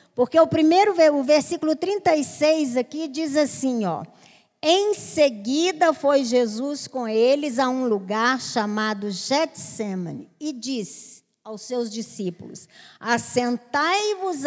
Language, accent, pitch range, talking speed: Portuguese, Brazilian, 235-315 Hz, 110 wpm